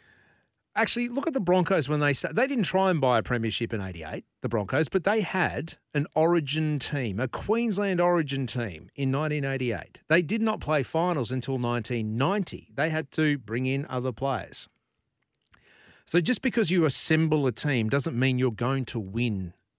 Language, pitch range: English, 120-155 Hz